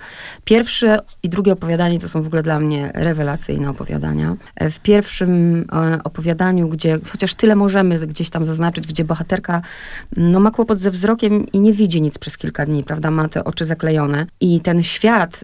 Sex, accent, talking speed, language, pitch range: female, native, 170 wpm, Polish, 160-195 Hz